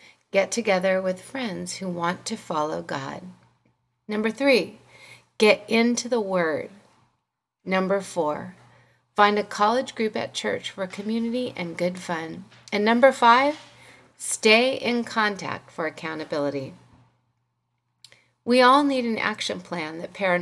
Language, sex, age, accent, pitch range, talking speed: English, female, 40-59, American, 170-230 Hz, 125 wpm